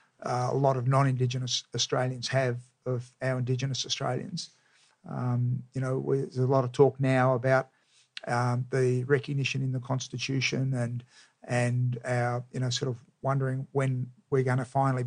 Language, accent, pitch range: English, Australian, 125-135 Hz